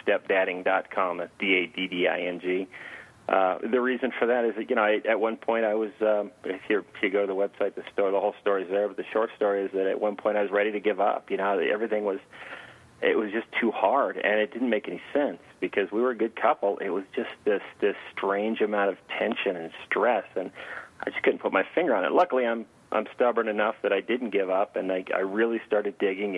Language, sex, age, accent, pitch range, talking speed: English, male, 30-49, American, 90-105 Hz, 240 wpm